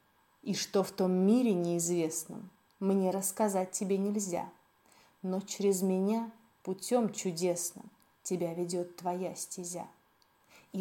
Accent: native